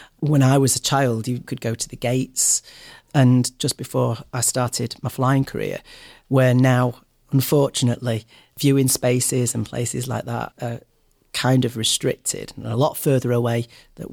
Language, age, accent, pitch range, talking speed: English, 40-59, British, 115-135 Hz, 160 wpm